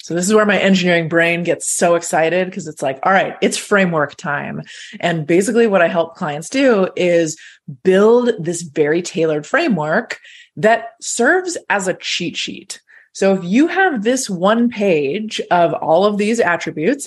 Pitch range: 170-220 Hz